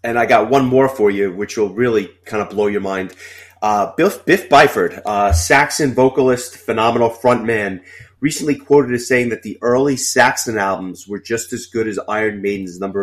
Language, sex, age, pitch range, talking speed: English, male, 30-49, 100-120 Hz, 190 wpm